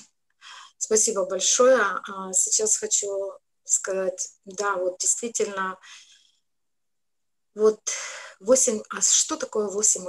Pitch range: 190-245 Hz